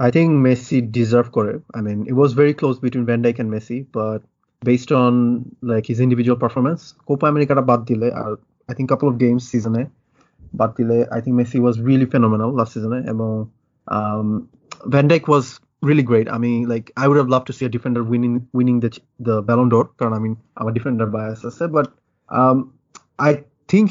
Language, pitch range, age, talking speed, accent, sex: English, 120-150 Hz, 20-39, 205 wpm, Indian, male